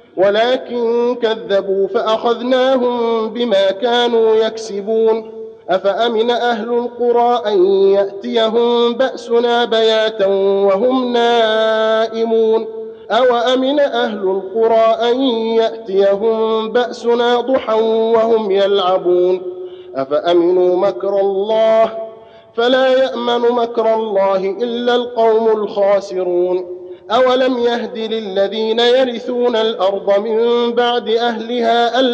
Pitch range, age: 200-240 Hz, 50-69